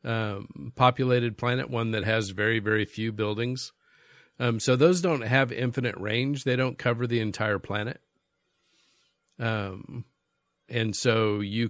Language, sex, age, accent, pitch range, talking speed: English, male, 50-69, American, 100-120 Hz, 140 wpm